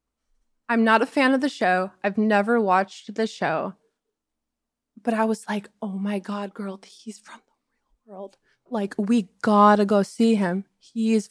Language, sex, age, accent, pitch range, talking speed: English, female, 20-39, American, 195-235 Hz, 175 wpm